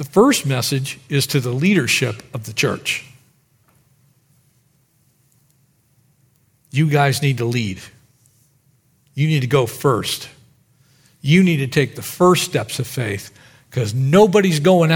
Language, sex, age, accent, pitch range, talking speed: English, male, 50-69, American, 130-150 Hz, 130 wpm